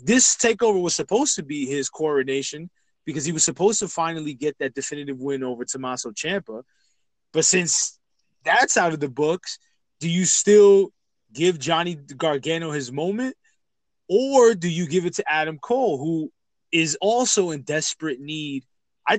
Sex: male